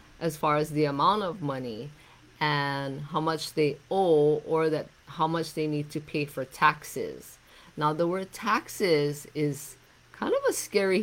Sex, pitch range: female, 145-180 Hz